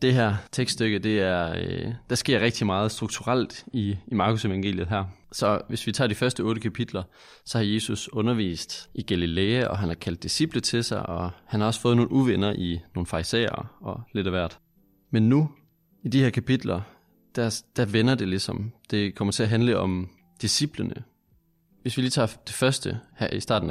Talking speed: 195 wpm